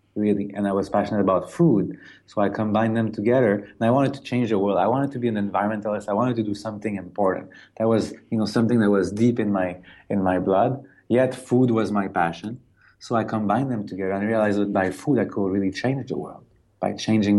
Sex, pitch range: male, 105-130 Hz